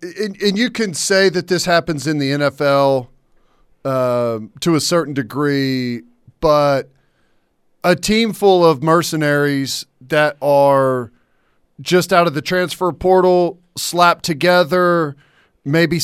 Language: English